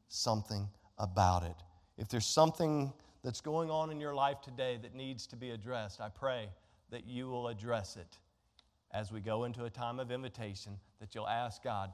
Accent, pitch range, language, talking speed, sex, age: American, 110-140 Hz, English, 185 wpm, male, 40-59